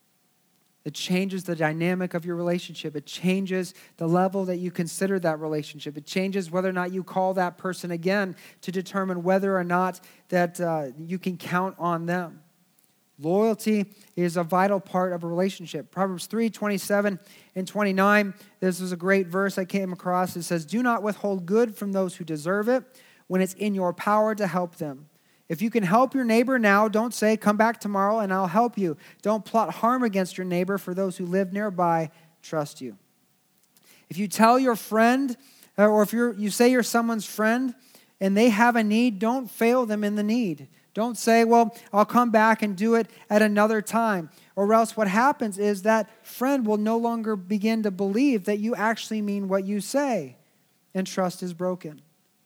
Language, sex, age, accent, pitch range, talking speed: English, male, 40-59, American, 180-220 Hz, 190 wpm